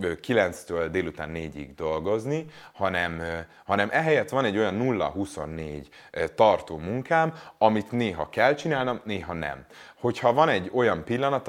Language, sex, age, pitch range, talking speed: Hungarian, male, 30-49, 85-125 Hz, 125 wpm